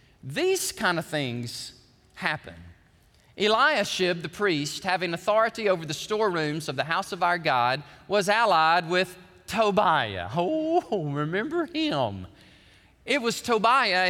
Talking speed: 125 wpm